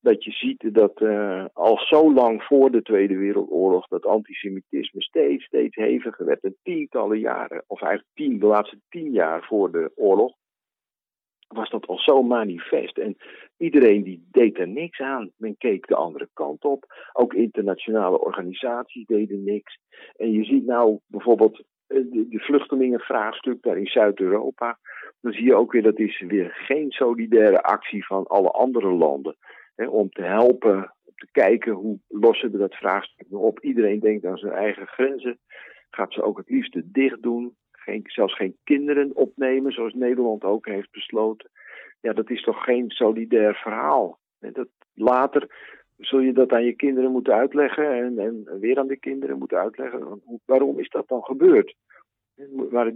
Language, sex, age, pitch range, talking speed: Dutch, male, 50-69, 110-145 Hz, 160 wpm